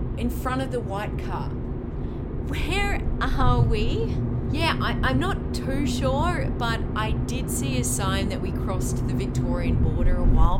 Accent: Australian